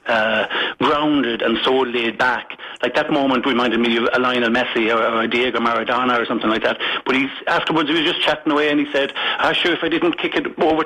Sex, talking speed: male, 230 wpm